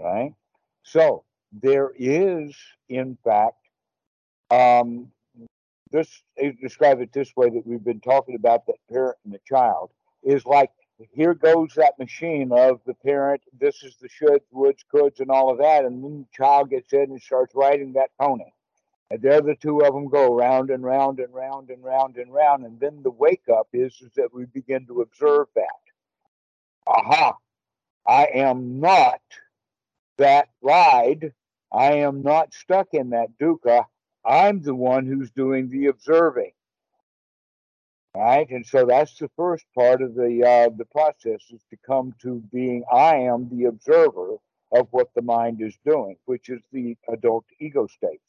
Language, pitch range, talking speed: English, 120-155 Hz, 165 wpm